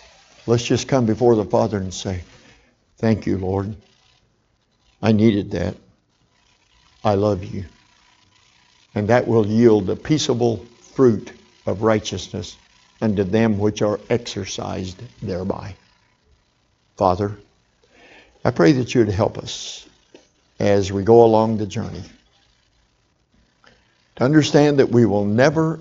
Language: English